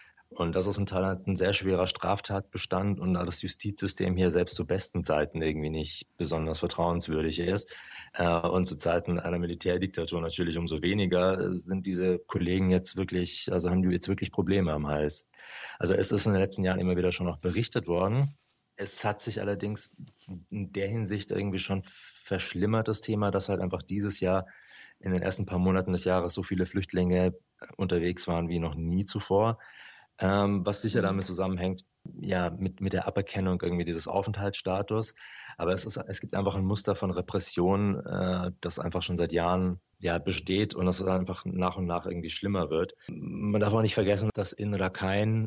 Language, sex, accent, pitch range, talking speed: German, male, German, 90-100 Hz, 180 wpm